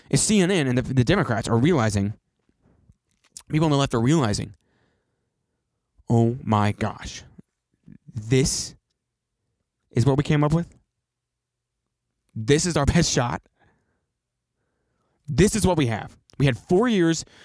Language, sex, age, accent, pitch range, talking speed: English, male, 20-39, American, 115-160 Hz, 130 wpm